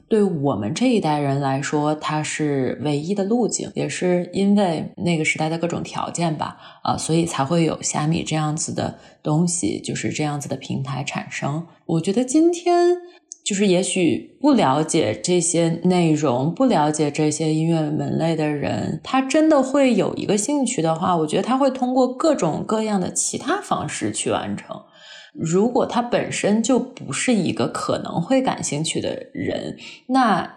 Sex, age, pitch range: female, 20-39, 155-220 Hz